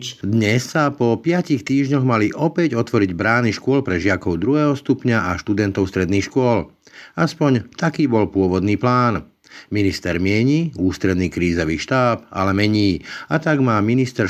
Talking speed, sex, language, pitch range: 145 wpm, male, Slovak, 100-135 Hz